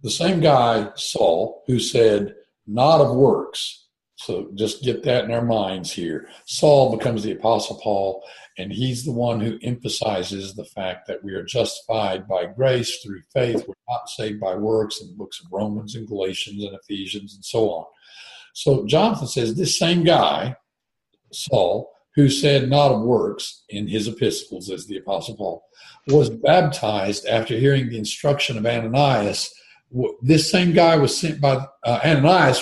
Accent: American